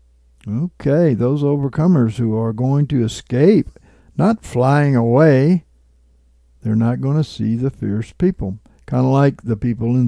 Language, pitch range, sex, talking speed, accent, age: English, 105-140 Hz, male, 150 wpm, American, 60-79